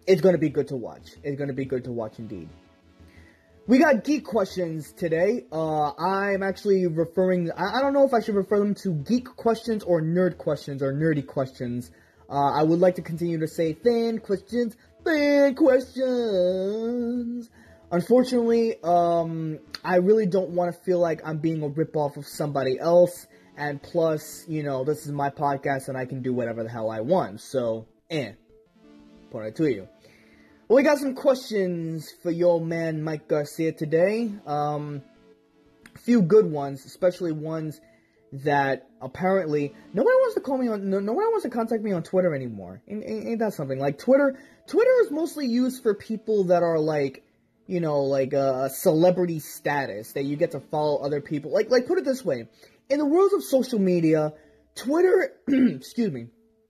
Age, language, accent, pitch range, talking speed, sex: 20-39, English, American, 140-220 Hz, 180 wpm, male